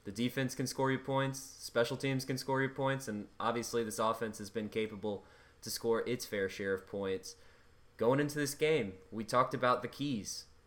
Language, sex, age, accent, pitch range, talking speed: English, male, 20-39, American, 100-125 Hz, 195 wpm